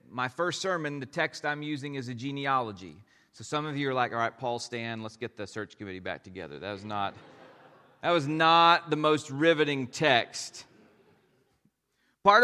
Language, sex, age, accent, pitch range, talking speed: English, male, 40-59, American, 125-180 Hz, 175 wpm